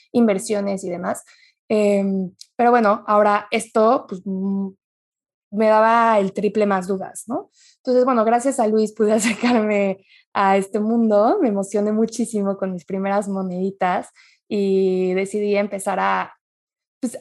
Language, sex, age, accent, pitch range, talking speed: Spanish, female, 20-39, Mexican, 195-225 Hz, 135 wpm